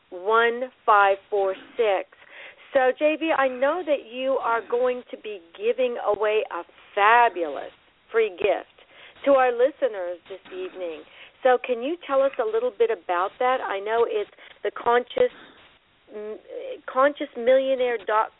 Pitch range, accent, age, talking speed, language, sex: 195-275 Hz, American, 50-69, 135 wpm, English, female